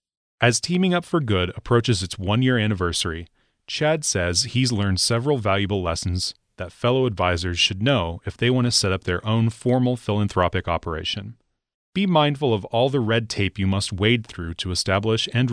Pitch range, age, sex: 90-120 Hz, 30-49, male